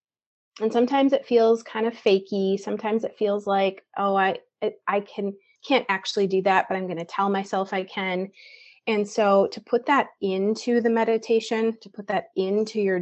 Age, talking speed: 30-49, 180 wpm